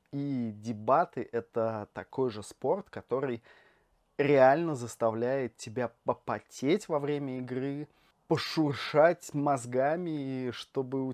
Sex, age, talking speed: male, 20-39, 95 wpm